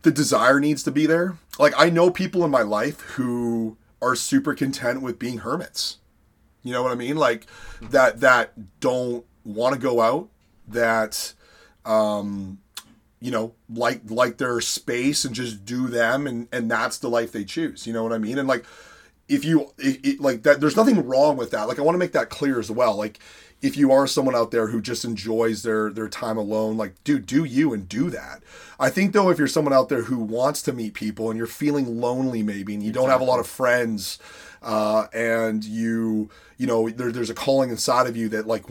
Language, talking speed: English, 215 wpm